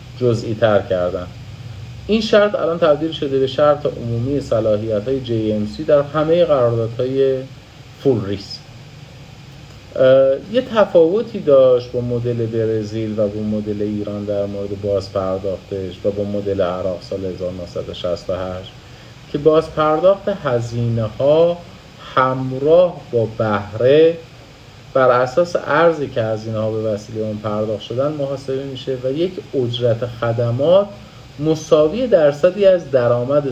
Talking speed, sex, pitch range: 120 wpm, male, 110-145 Hz